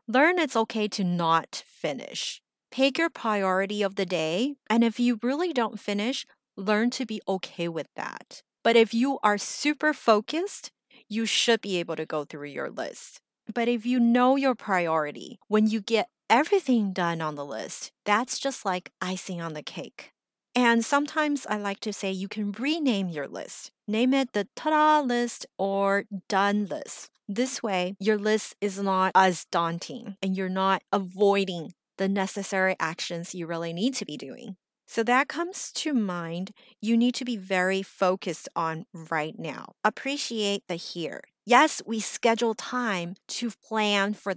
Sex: female